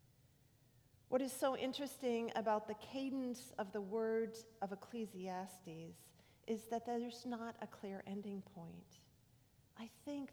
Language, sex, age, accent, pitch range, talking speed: English, female, 40-59, American, 185-240 Hz, 130 wpm